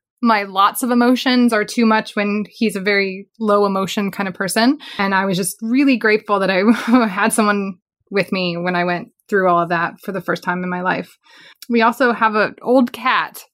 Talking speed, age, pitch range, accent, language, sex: 215 wpm, 20-39, 195-245 Hz, American, English, female